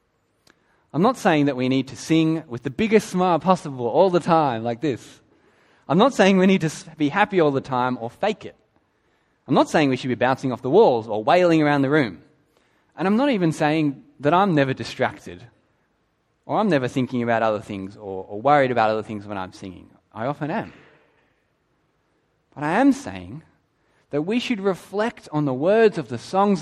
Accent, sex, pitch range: Australian, male, 130-180 Hz